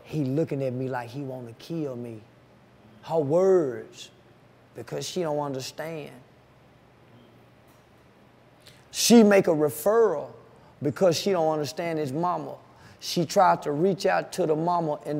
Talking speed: 140 wpm